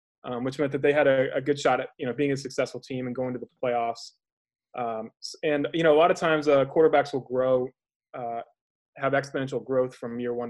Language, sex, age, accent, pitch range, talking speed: English, male, 20-39, American, 120-145 Hz, 235 wpm